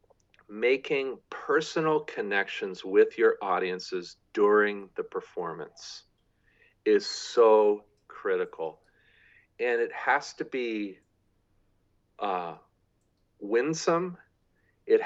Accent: American